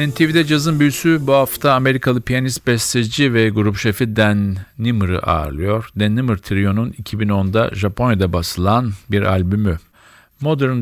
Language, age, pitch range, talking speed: Turkish, 50-69, 95-115 Hz, 130 wpm